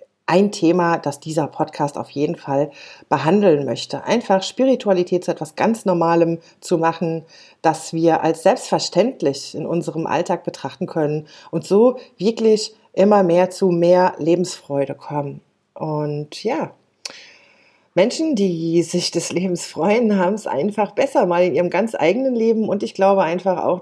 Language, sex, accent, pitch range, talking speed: German, female, German, 150-185 Hz, 150 wpm